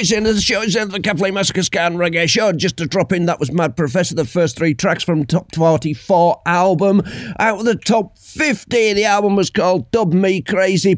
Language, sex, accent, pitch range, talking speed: English, male, British, 150-195 Hz, 220 wpm